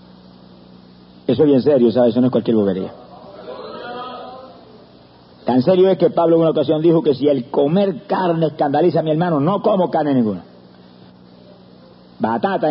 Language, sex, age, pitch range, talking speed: Spanish, male, 50-69, 110-175 Hz, 155 wpm